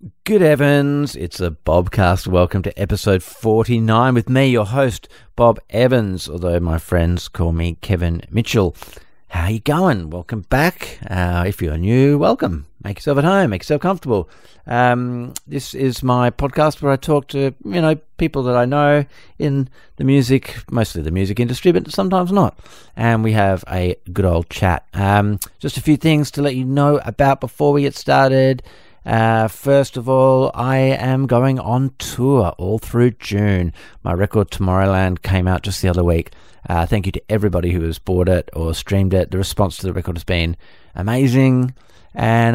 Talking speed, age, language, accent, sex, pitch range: 180 wpm, 50-69, English, Australian, male, 90-130 Hz